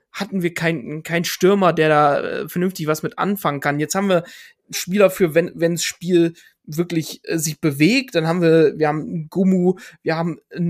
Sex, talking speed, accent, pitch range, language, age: male, 195 wpm, German, 155-180 Hz, German, 20-39